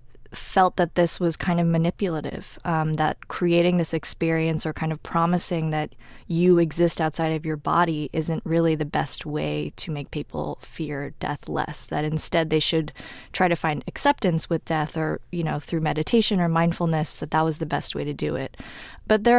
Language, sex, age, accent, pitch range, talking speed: English, female, 20-39, American, 155-180 Hz, 190 wpm